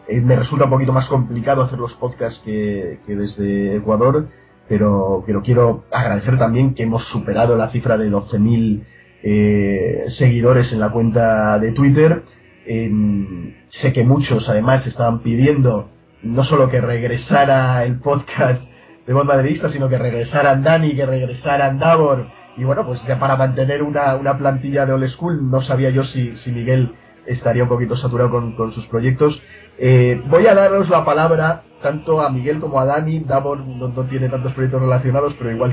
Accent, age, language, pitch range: Spanish, 40-59, Spanish, 120-145 Hz